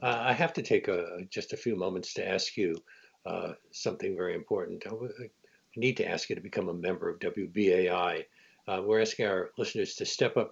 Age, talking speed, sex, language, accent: 60-79, 205 wpm, male, English, American